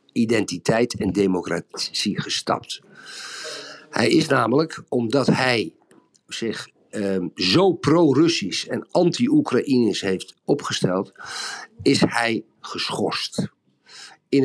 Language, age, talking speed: Dutch, 50-69, 85 wpm